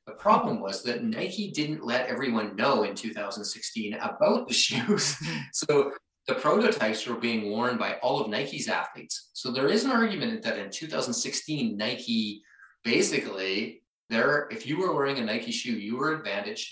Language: English